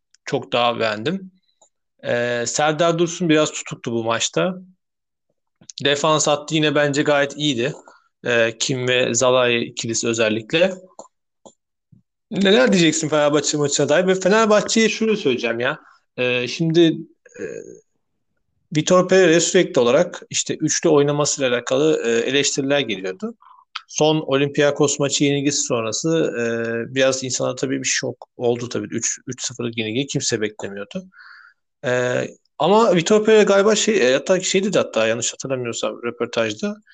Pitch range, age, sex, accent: 125-170 Hz, 40-59, male, native